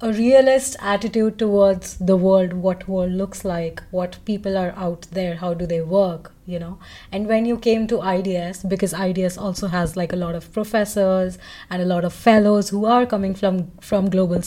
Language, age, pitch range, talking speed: English, 20-39, 185-215 Hz, 195 wpm